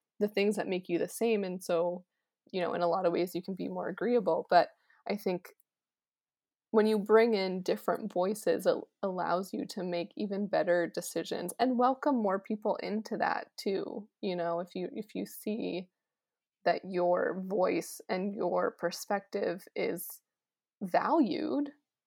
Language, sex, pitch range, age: English, female, 180-235 Hz, 20-39